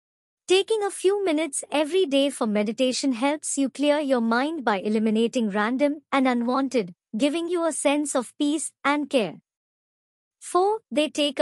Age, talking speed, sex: 50-69, 150 wpm, male